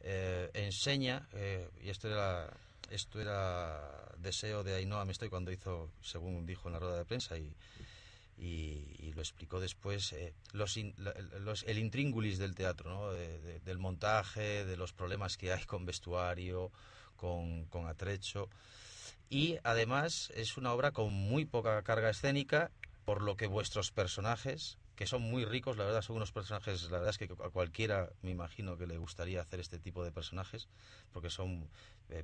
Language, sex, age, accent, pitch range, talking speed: Spanish, male, 30-49, Spanish, 90-110 Hz, 175 wpm